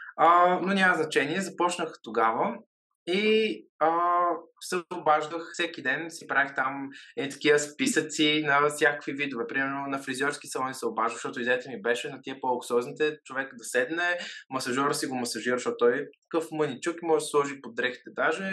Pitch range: 140-175 Hz